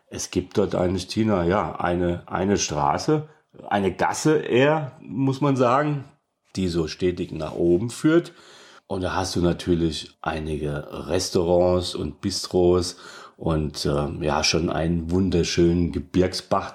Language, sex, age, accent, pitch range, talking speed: German, male, 40-59, German, 85-105 Hz, 135 wpm